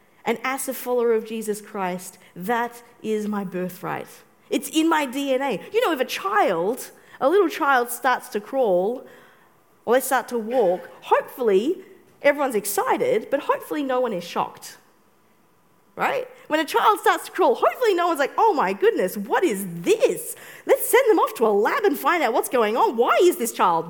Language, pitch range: English, 220-360 Hz